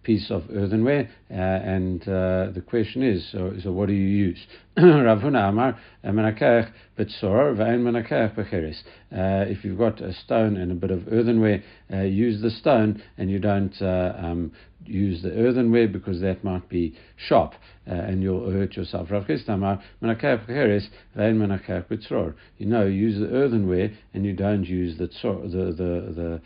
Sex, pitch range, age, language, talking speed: male, 90-110 Hz, 60-79, English, 135 wpm